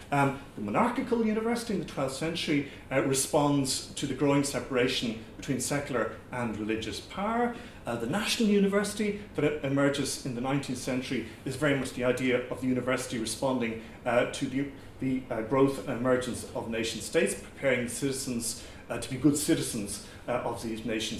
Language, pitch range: English, 120-160 Hz